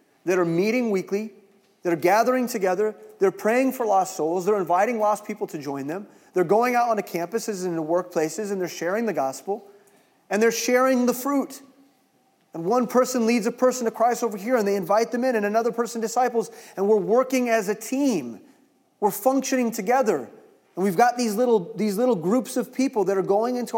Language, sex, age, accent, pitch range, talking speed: English, male, 30-49, American, 170-230 Hz, 205 wpm